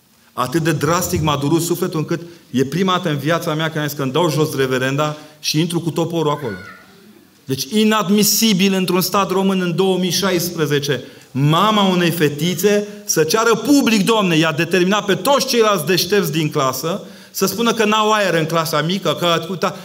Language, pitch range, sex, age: Romanian, 150-200 Hz, male, 40-59